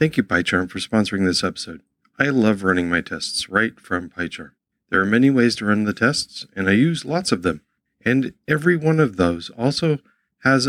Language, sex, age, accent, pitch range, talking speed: English, male, 50-69, American, 95-130 Hz, 200 wpm